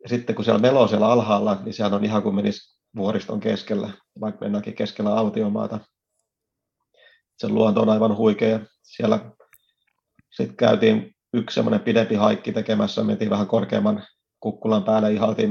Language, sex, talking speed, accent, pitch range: Finnish, male, 145 wpm, native, 105-120 Hz